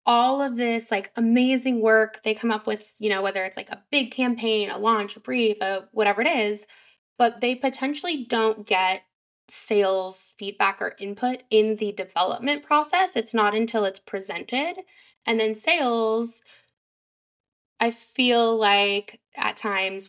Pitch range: 195-235 Hz